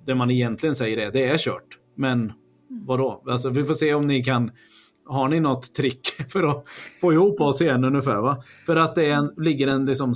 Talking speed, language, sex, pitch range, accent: 215 wpm, Swedish, male, 120-155 Hz, native